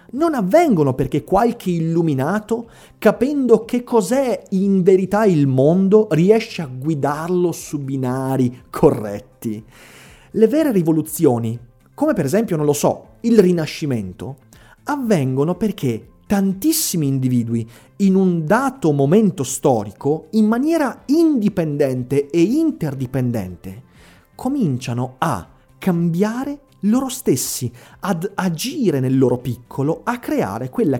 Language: Italian